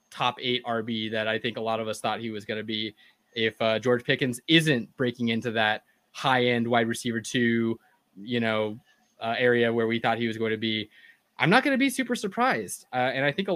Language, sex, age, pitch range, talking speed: English, male, 20-39, 115-140 Hz, 230 wpm